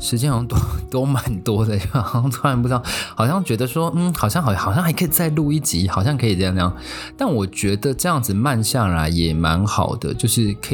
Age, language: 20-39, Chinese